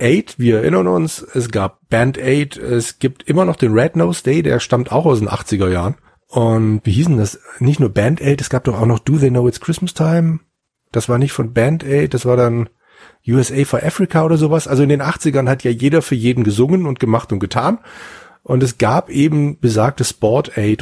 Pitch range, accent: 110-145 Hz, German